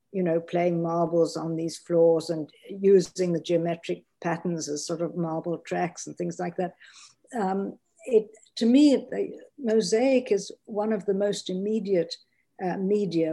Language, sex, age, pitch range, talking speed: English, female, 60-79, 170-210 Hz, 160 wpm